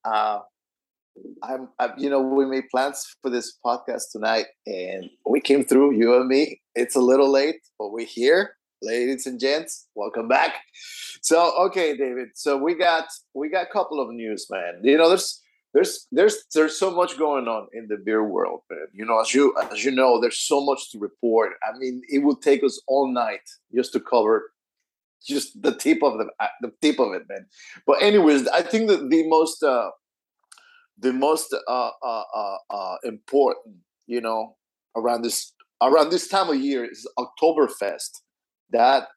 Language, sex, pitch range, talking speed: English, male, 125-195 Hz, 180 wpm